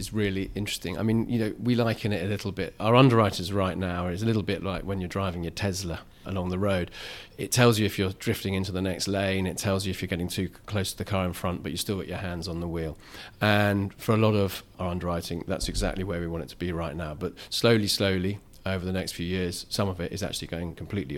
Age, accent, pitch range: 40-59, British, 90-105 Hz